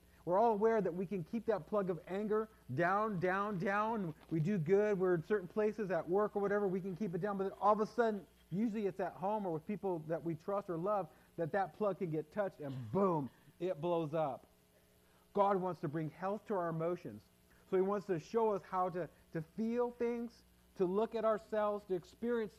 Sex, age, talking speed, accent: male, 40-59, 225 wpm, American